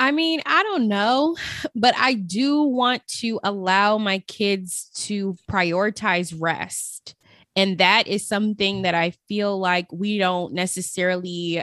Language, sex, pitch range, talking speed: English, female, 190-240 Hz, 140 wpm